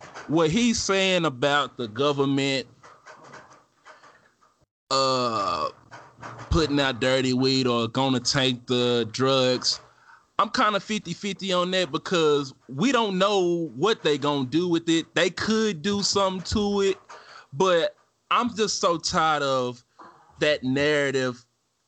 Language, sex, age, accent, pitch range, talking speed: English, male, 20-39, American, 130-175 Hz, 130 wpm